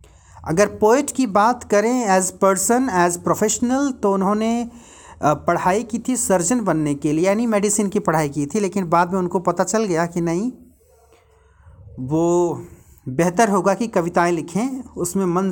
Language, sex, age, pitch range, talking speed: Hindi, male, 50-69, 165-235 Hz, 160 wpm